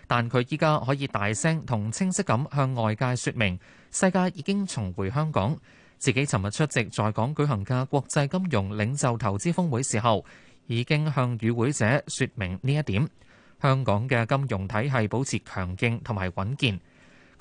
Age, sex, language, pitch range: 20-39, male, Chinese, 110-150 Hz